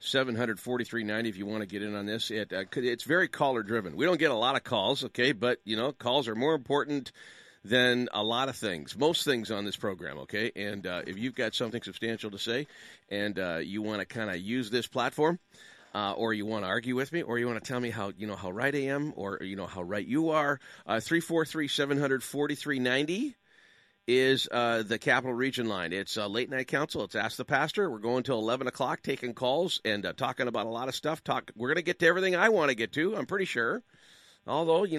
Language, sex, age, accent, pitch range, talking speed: English, male, 40-59, American, 110-155 Hz, 255 wpm